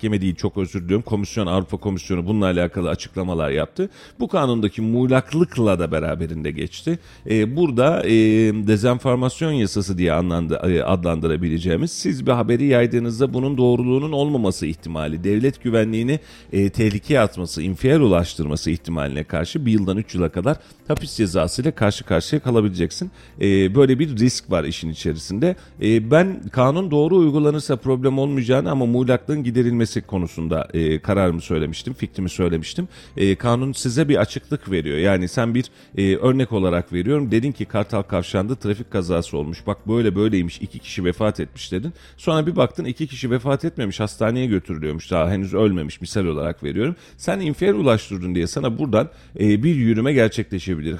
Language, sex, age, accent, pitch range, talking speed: Turkish, male, 40-59, native, 90-130 Hz, 150 wpm